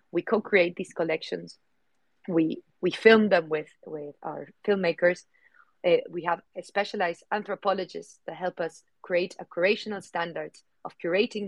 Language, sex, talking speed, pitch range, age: English, female, 140 wpm, 160-190 Hz, 30-49